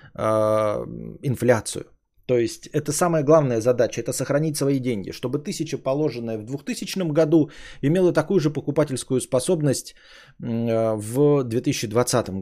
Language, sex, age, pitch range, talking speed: Bulgarian, male, 20-39, 120-170 Hz, 115 wpm